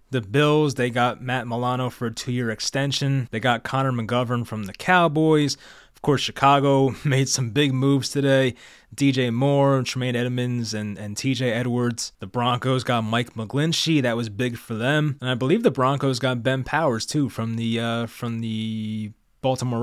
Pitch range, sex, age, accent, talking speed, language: 115-140 Hz, male, 20-39, American, 175 wpm, English